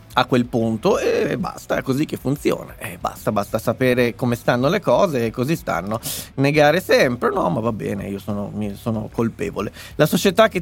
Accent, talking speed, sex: native, 200 wpm, male